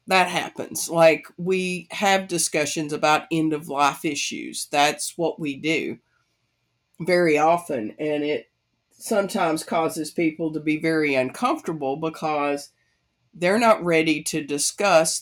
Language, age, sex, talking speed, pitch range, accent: English, 50-69, female, 120 wpm, 150-180 Hz, American